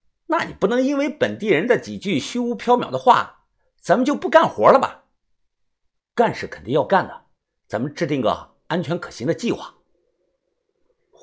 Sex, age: male, 50-69